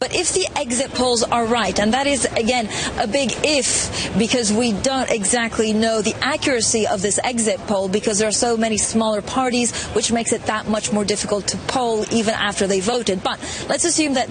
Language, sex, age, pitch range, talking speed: English, female, 30-49, 180-240 Hz, 205 wpm